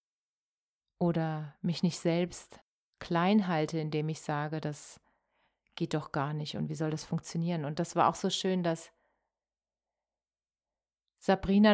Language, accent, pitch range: German, German, 160-190 Hz